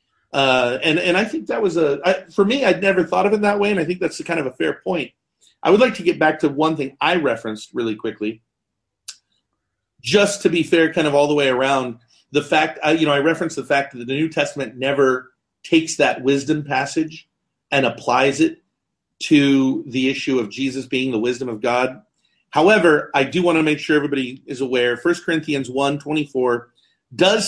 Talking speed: 210 wpm